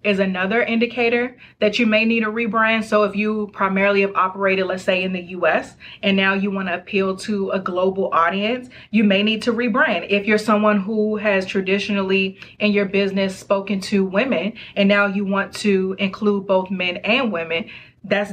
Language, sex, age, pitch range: English, female, 30-49, 195-220 Hz